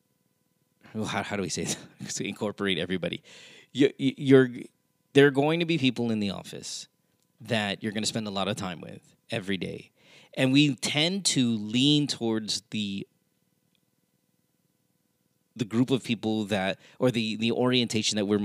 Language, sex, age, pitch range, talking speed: English, male, 30-49, 105-140 Hz, 165 wpm